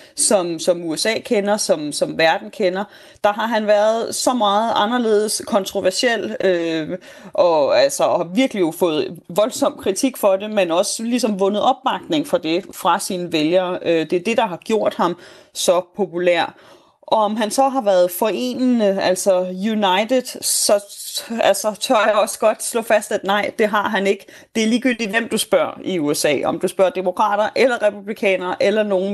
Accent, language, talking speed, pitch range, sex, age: native, Danish, 175 wpm, 190-240 Hz, female, 30-49